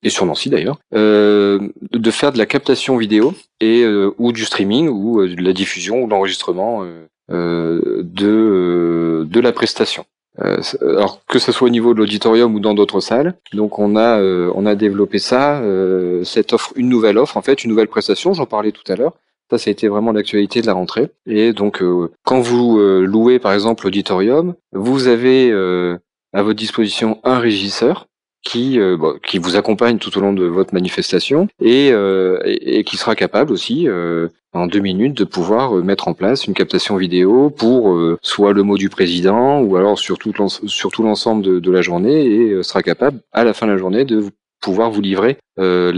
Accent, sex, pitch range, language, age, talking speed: French, male, 95-115 Hz, French, 40-59, 200 wpm